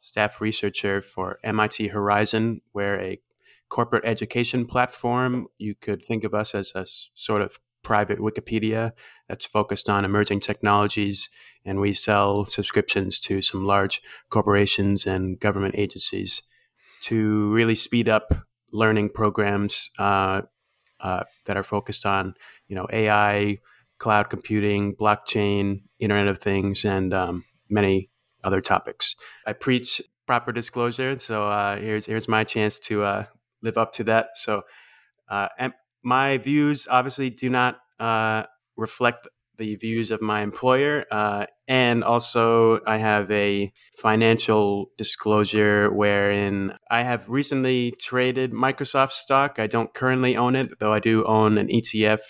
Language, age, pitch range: English, 30-49, 100-120 Hz